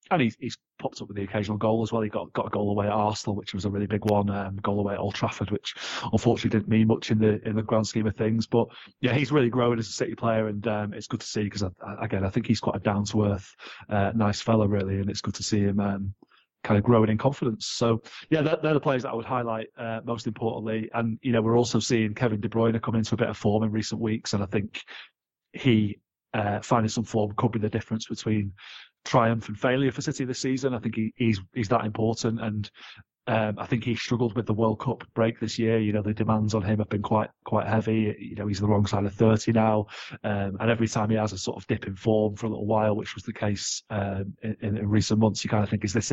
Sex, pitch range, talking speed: male, 105-115 Hz, 270 wpm